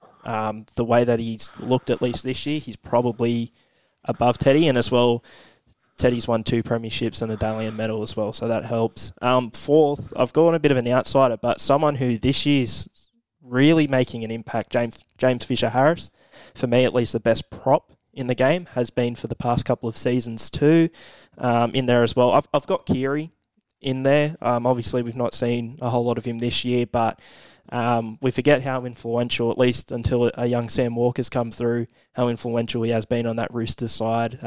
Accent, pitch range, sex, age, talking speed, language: Australian, 115-130 Hz, male, 10-29, 205 wpm, English